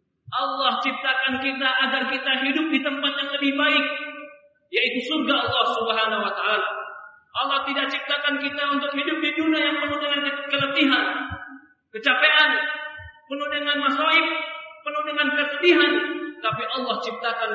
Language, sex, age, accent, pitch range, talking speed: Indonesian, male, 40-59, native, 230-295 Hz, 135 wpm